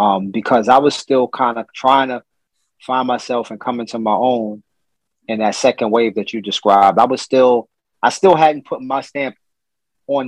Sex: male